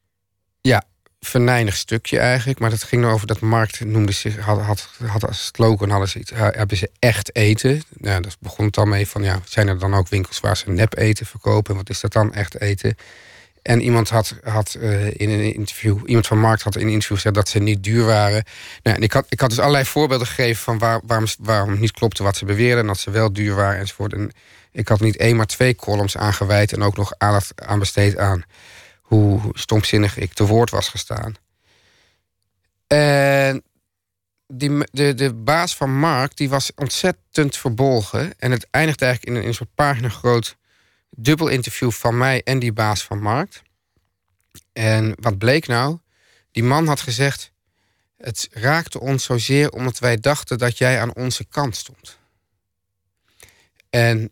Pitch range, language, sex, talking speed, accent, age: 100-125 Hz, Dutch, male, 180 wpm, Dutch, 40-59